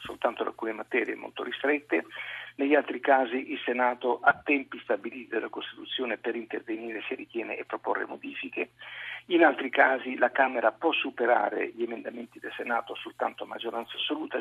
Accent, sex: native, male